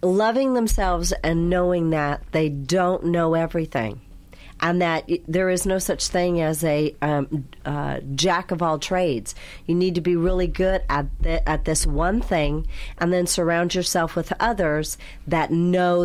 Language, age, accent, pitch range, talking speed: English, 40-59, American, 160-190 Hz, 150 wpm